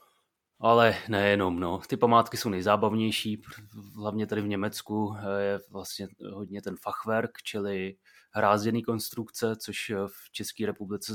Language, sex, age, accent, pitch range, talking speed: Czech, male, 30-49, native, 95-105 Hz, 125 wpm